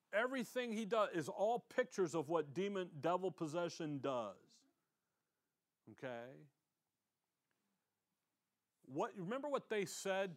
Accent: American